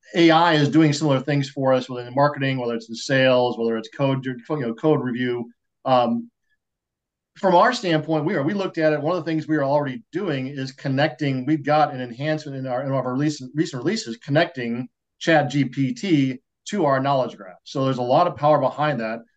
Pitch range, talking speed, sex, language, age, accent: 125-155 Hz, 205 wpm, male, English, 40-59, American